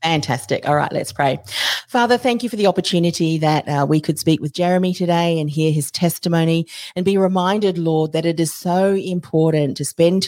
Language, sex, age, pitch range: English, female, 40-59, 150-185 Hz